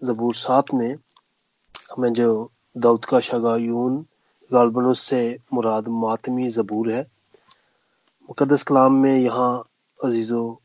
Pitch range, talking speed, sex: 115-130 Hz, 105 wpm, male